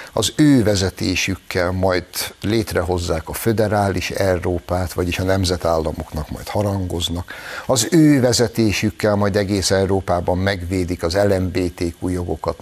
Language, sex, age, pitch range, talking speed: Hungarian, male, 60-79, 90-110 Hz, 110 wpm